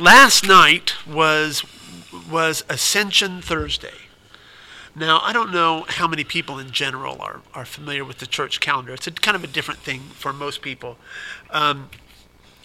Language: English